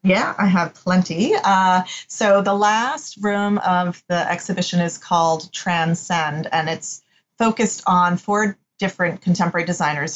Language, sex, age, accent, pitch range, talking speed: English, female, 30-49, American, 170-200 Hz, 135 wpm